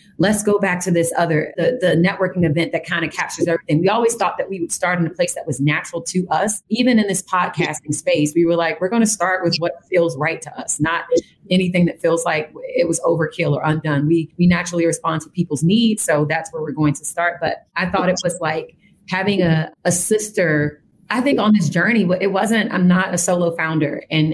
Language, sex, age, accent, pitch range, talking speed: English, female, 30-49, American, 155-180 Hz, 235 wpm